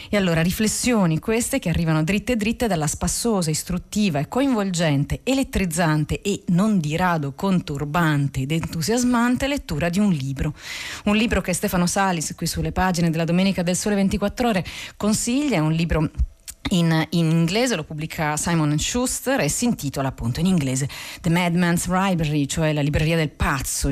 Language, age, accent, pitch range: Italian, 30-49, native, 155-210 Hz